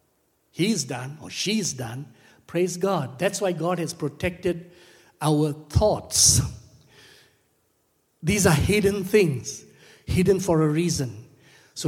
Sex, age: male, 60-79